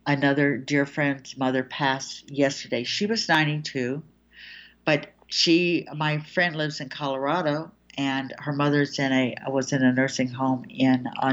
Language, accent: English, American